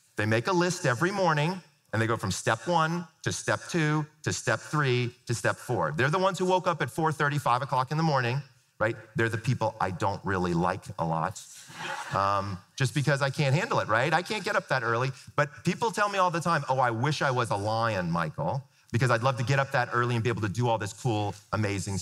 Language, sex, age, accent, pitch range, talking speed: English, male, 40-59, American, 115-165 Hz, 245 wpm